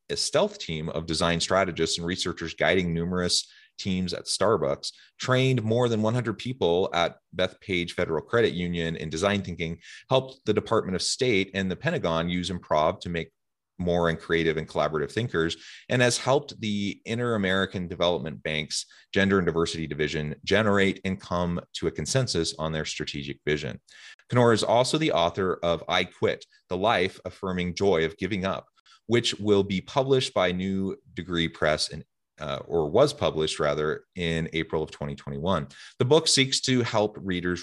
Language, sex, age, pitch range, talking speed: English, male, 30-49, 85-110 Hz, 165 wpm